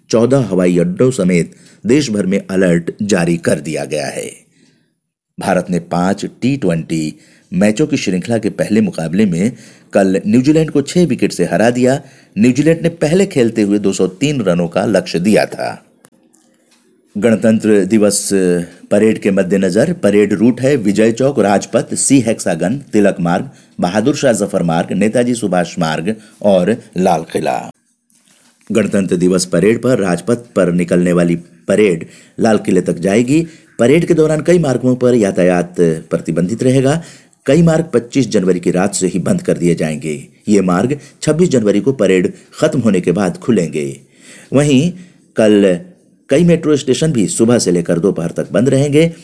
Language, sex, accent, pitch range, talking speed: Hindi, male, native, 90-145 Hz, 150 wpm